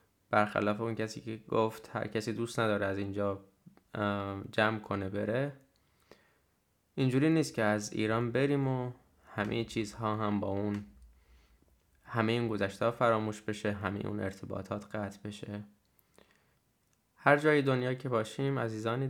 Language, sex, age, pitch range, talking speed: Persian, male, 20-39, 105-120 Hz, 130 wpm